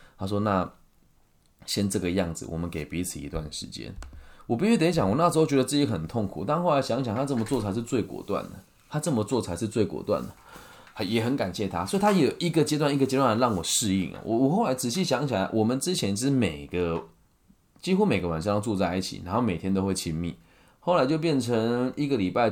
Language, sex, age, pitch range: Chinese, male, 20-39, 90-135 Hz